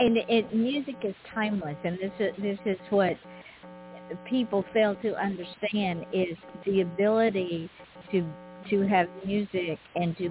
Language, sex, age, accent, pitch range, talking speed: English, female, 50-69, American, 170-205 Hz, 140 wpm